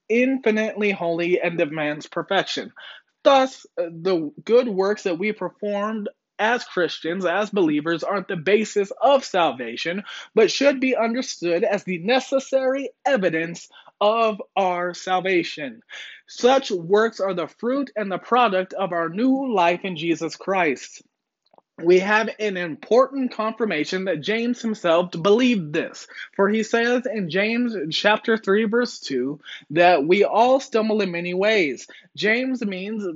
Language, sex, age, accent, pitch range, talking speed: English, male, 20-39, American, 175-230 Hz, 135 wpm